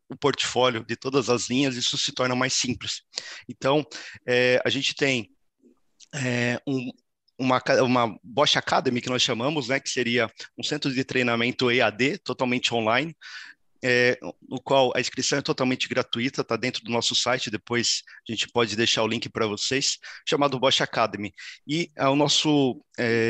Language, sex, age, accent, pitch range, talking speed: Portuguese, male, 30-49, Brazilian, 125-140 Hz, 160 wpm